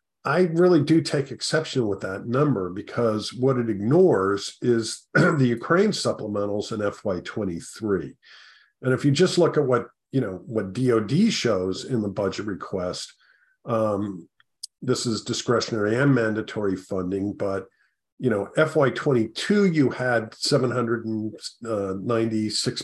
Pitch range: 105-140 Hz